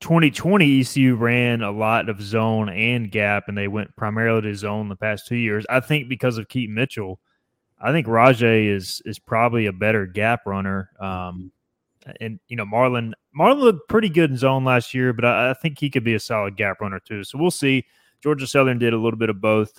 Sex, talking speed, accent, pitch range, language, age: male, 215 wpm, American, 105-130 Hz, English, 20-39